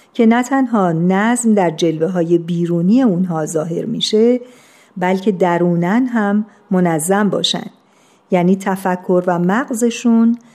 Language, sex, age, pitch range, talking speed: Persian, female, 50-69, 175-225 Hz, 115 wpm